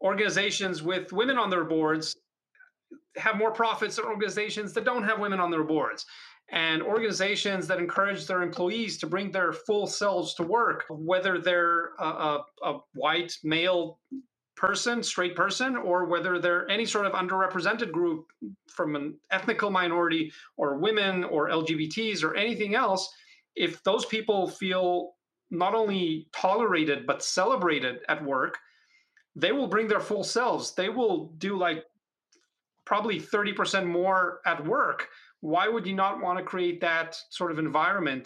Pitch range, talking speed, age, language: 160-200 Hz, 150 wpm, 30-49, English